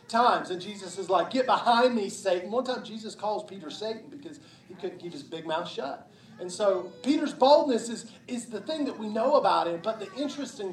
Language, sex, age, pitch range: English, male, 40-59, 175-220 Hz